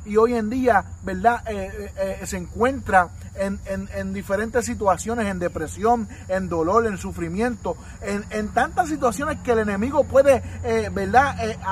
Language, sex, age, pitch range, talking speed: Spanish, male, 30-49, 210-260 Hz, 165 wpm